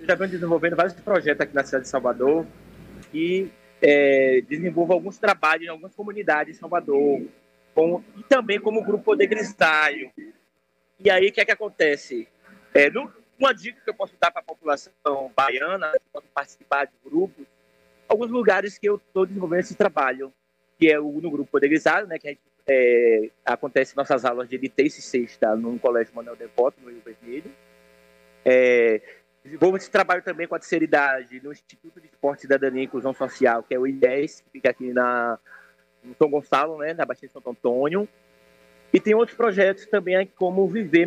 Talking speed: 185 wpm